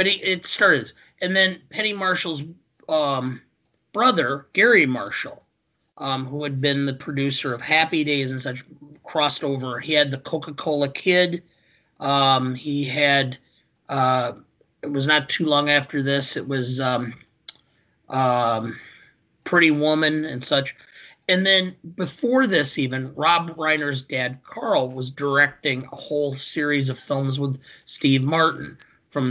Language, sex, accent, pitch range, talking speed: English, male, American, 135-170 Hz, 140 wpm